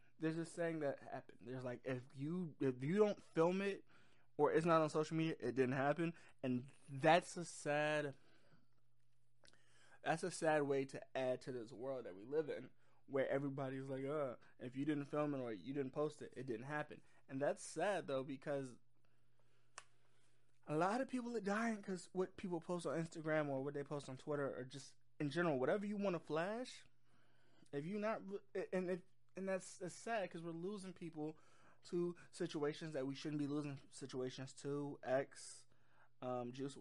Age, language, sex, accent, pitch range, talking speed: 20-39, English, male, American, 125-160 Hz, 185 wpm